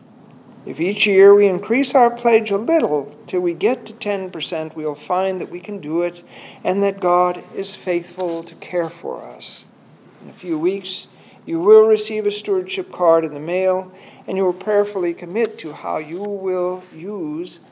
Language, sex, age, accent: English, male, 50-69, American